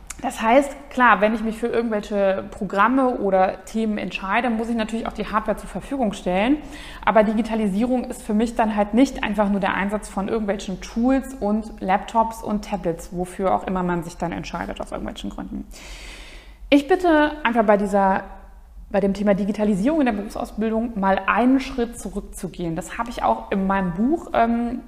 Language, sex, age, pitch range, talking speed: German, female, 20-39, 205-250 Hz, 175 wpm